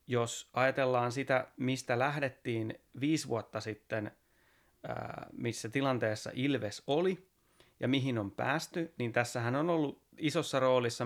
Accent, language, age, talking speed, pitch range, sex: native, Finnish, 30-49, 120 wpm, 110-130 Hz, male